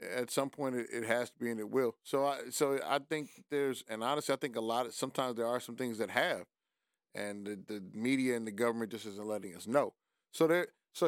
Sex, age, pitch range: male, 30-49, 115-135 Hz